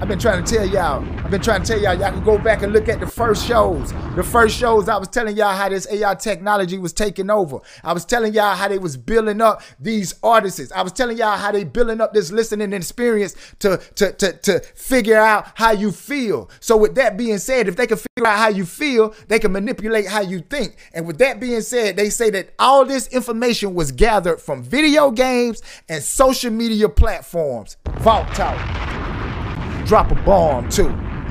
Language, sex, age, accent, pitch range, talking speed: English, male, 30-49, American, 205-245 Hz, 215 wpm